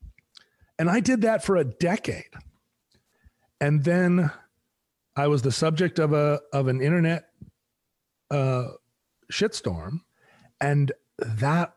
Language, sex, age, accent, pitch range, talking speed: English, male, 40-59, American, 125-175 Hz, 110 wpm